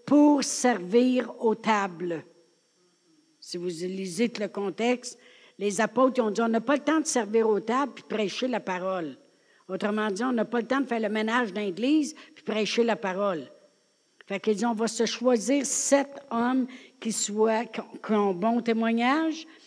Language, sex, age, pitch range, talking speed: French, female, 60-79, 215-255 Hz, 180 wpm